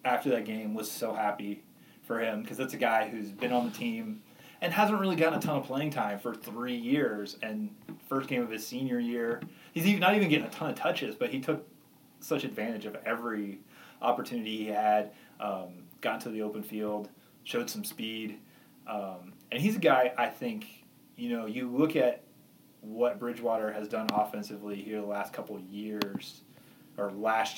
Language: English